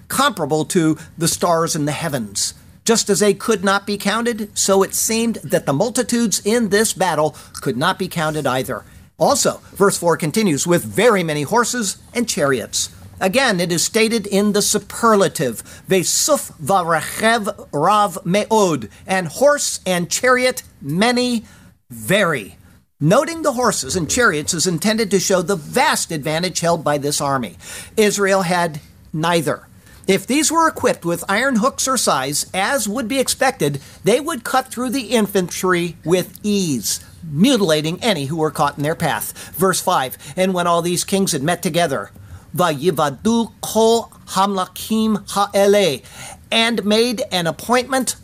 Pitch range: 155-220 Hz